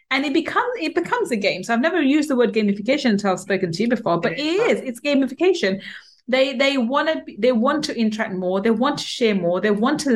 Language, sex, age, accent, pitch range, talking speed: English, female, 30-49, British, 200-260 Hz, 240 wpm